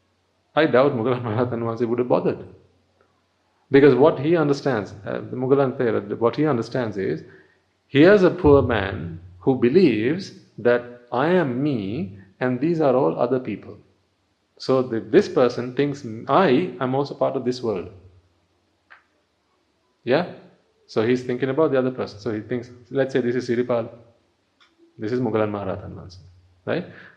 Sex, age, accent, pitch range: male, 30-49, Indian, 100-145 Hz